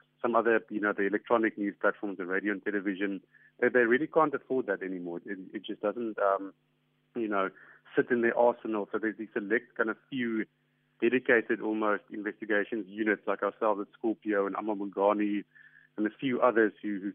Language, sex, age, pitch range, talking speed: English, male, 30-49, 105-125 Hz, 190 wpm